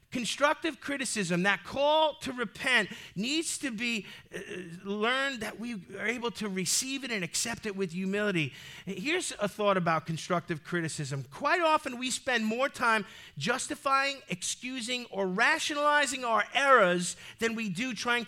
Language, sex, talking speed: English, male, 145 wpm